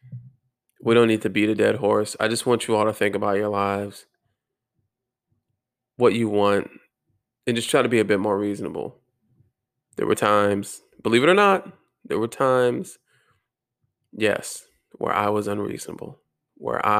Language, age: English, 20-39